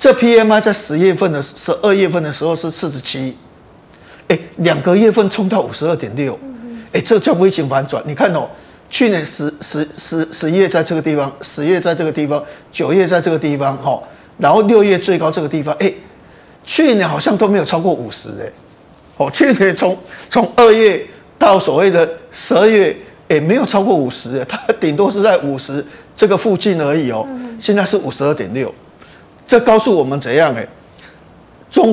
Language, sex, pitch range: Chinese, male, 150-210 Hz